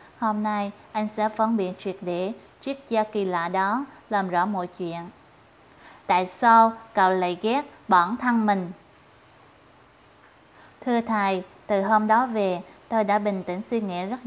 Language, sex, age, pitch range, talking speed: Vietnamese, female, 20-39, 190-230 Hz, 160 wpm